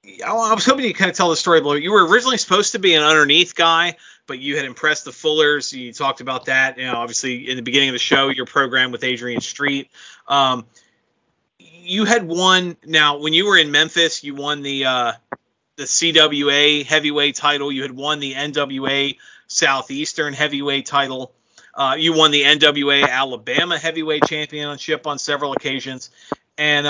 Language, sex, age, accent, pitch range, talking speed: English, male, 30-49, American, 135-170 Hz, 180 wpm